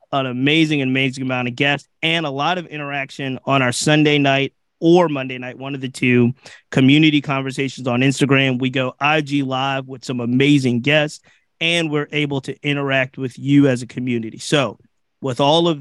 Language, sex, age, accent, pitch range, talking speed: English, male, 30-49, American, 130-160 Hz, 180 wpm